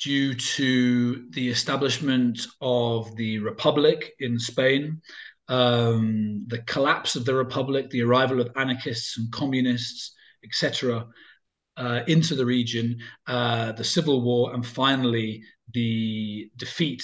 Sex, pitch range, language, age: male, 115-140 Hz, English, 30-49